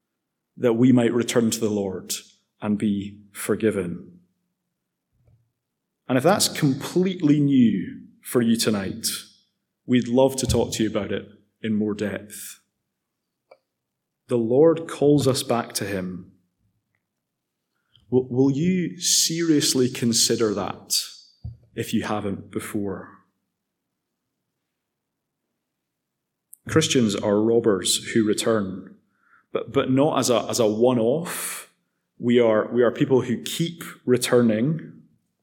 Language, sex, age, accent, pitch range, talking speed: English, male, 30-49, British, 110-145 Hz, 110 wpm